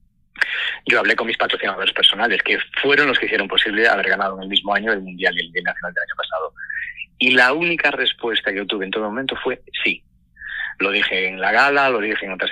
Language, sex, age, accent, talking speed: Spanish, male, 30-49, Spanish, 225 wpm